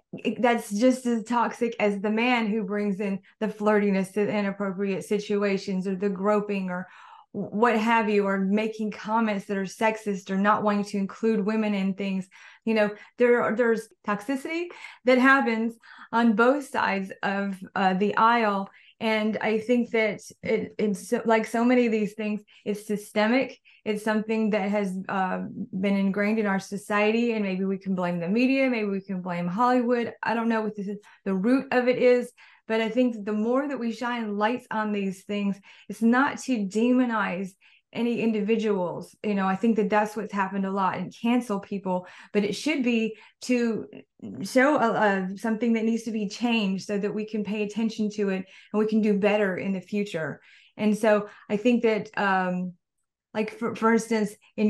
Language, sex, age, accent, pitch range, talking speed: English, female, 20-39, American, 200-230 Hz, 180 wpm